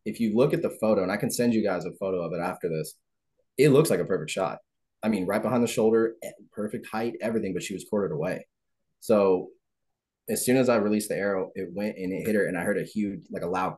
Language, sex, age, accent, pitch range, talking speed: English, male, 20-39, American, 95-115 Hz, 260 wpm